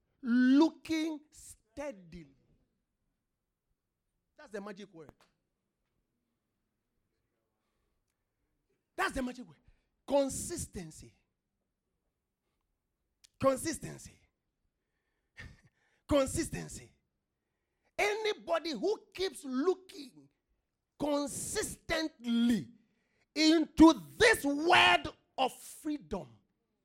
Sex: male